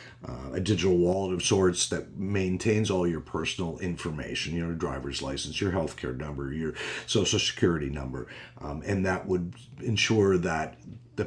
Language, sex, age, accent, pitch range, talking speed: English, male, 50-69, American, 80-110 Hz, 155 wpm